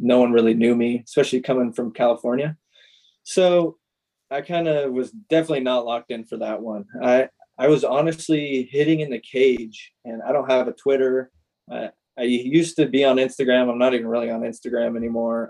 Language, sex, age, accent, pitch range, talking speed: English, male, 20-39, American, 115-135 Hz, 190 wpm